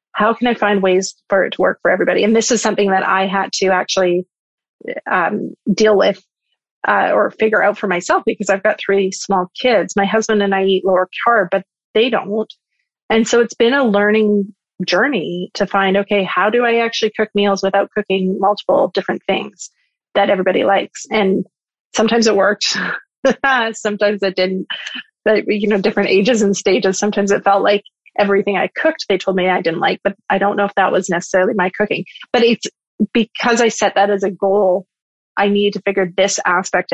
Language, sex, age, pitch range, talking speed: English, female, 30-49, 190-215 Hz, 195 wpm